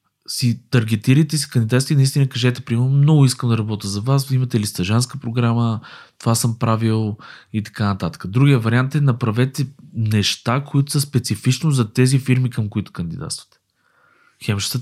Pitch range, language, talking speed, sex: 100-130 Hz, Bulgarian, 155 wpm, male